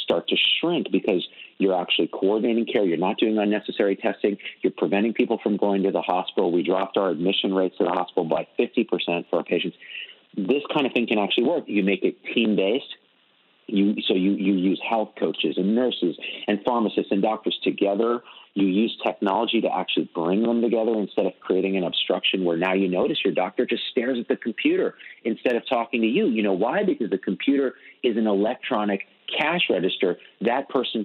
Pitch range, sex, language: 95-115 Hz, male, English